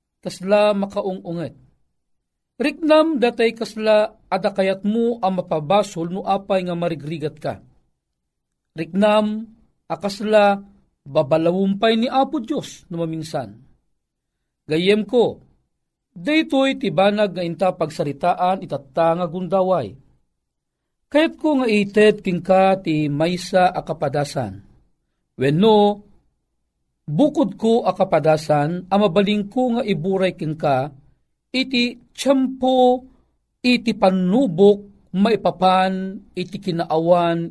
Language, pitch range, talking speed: Filipino, 160-220 Hz, 85 wpm